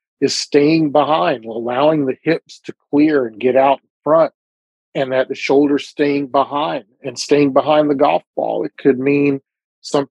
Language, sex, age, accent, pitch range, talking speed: English, male, 40-59, American, 130-150 Hz, 170 wpm